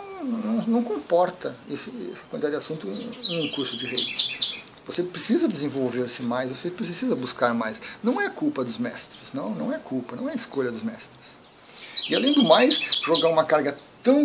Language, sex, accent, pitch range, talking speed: Portuguese, male, Brazilian, 140-230 Hz, 180 wpm